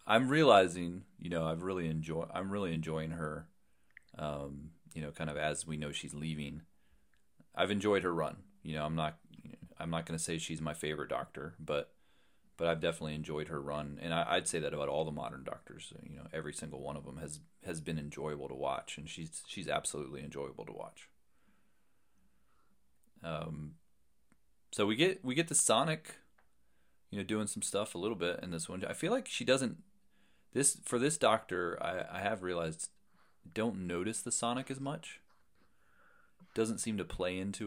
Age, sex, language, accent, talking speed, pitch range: 30-49, male, English, American, 190 wpm, 75-100 Hz